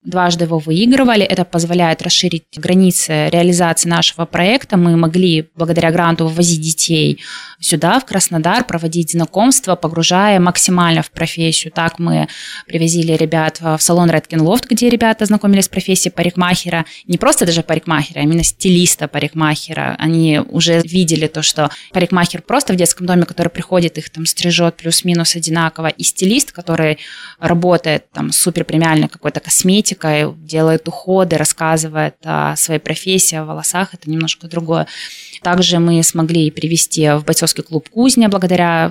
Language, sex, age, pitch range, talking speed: Russian, female, 20-39, 160-180 Hz, 145 wpm